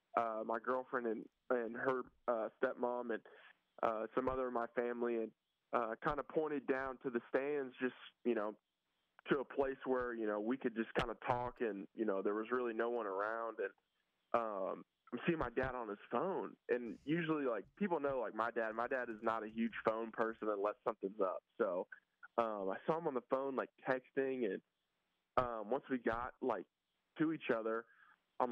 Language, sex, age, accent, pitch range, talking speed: English, male, 20-39, American, 115-135 Hz, 200 wpm